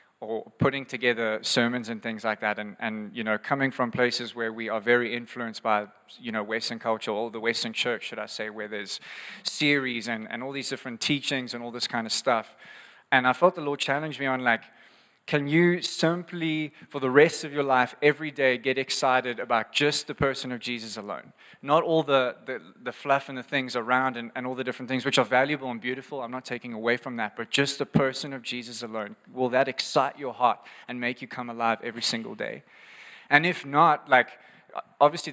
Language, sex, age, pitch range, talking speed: English, male, 20-39, 125-150 Hz, 215 wpm